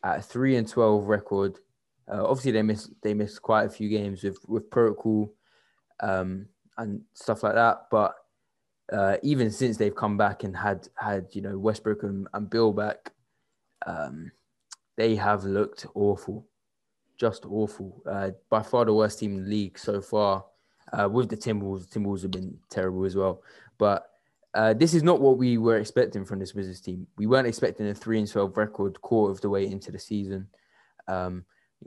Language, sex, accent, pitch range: English, male, British, 100-110 Hz